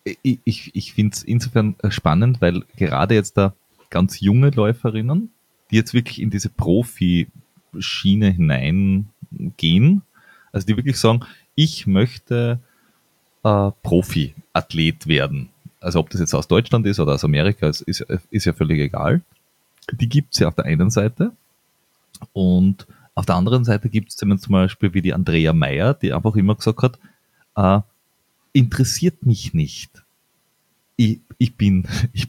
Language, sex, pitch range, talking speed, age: German, male, 100-135 Hz, 150 wpm, 30-49